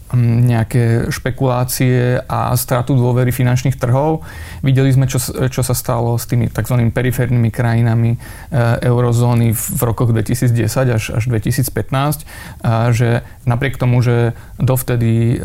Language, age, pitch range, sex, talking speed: Slovak, 30-49, 120-135 Hz, male, 125 wpm